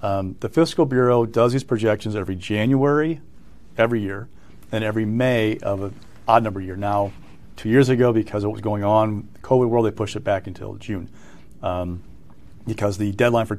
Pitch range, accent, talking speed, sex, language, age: 100-125 Hz, American, 190 wpm, male, English, 40-59